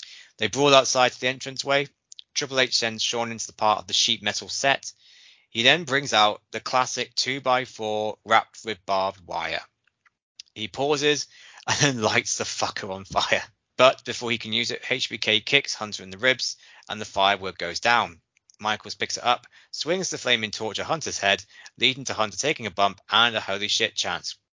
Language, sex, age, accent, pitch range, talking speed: English, male, 20-39, British, 105-130 Hz, 195 wpm